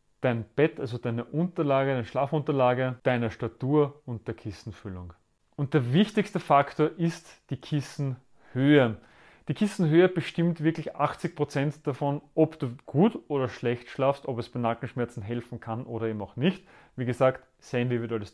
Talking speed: 145 wpm